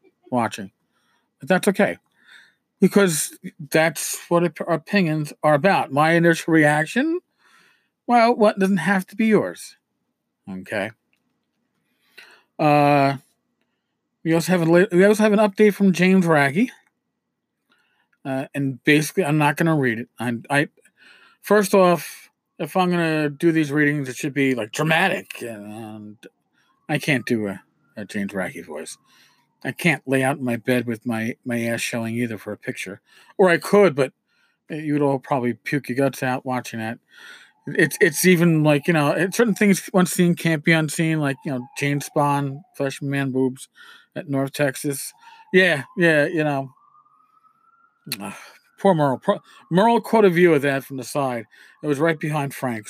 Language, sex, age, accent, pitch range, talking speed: English, male, 40-59, American, 135-190 Hz, 160 wpm